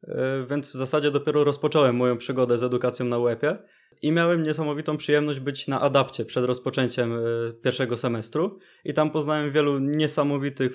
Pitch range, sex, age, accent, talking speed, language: 130-155 Hz, male, 20-39, native, 150 wpm, Polish